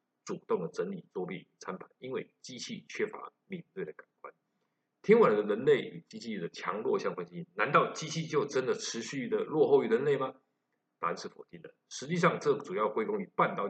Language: Chinese